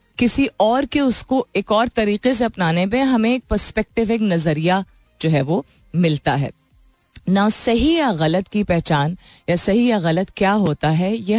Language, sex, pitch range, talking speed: Hindi, female, 150-210 Hz, 180 wpm